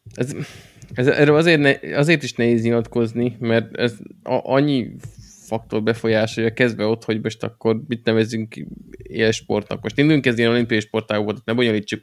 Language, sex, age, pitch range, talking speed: Hungarian, male, 20-39, 110-125 Hz, 155 wpm